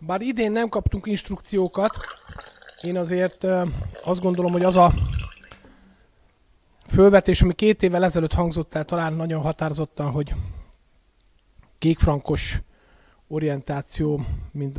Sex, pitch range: male, 140-180 Hz